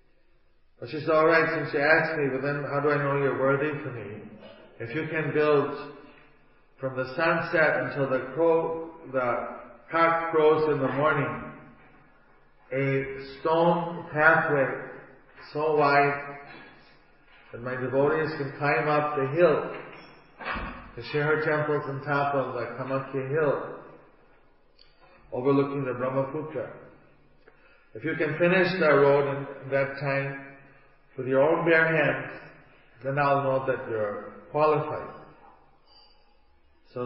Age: 40-59